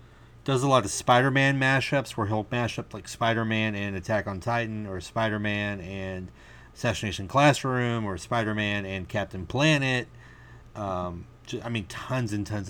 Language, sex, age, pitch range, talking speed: English, male, 30-49, 110-140 Hz, 150 wpm